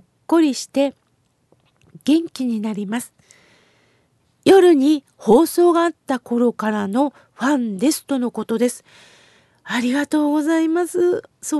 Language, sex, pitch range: Japanese, female, 245-315 Hz